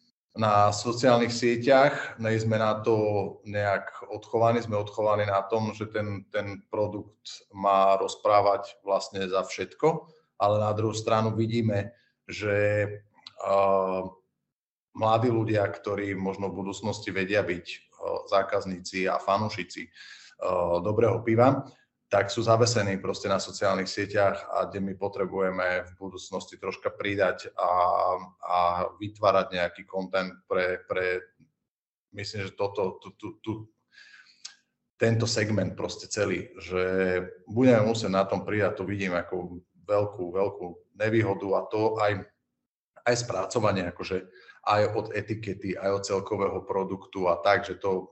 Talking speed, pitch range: 125 wpm, 95-110 Hz